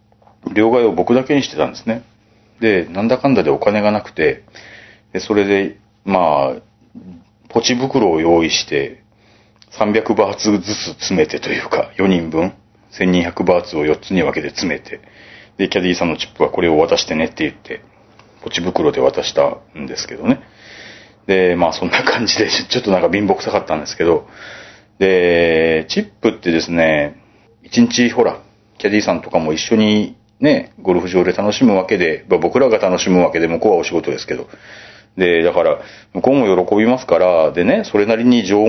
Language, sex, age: Japanese, male, 40-59